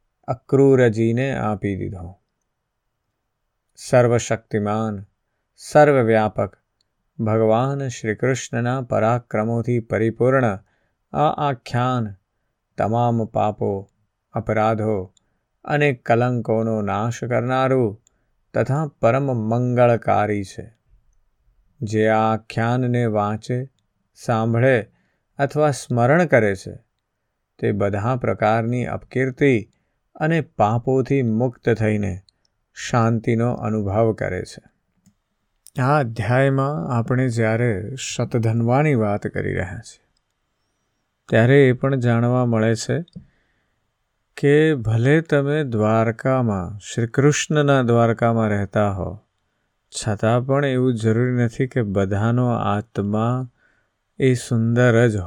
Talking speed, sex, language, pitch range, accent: 65 wpm, male, Gujarati, 110-125 Hz, native